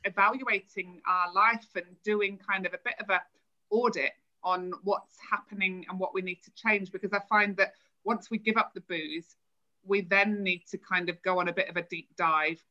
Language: English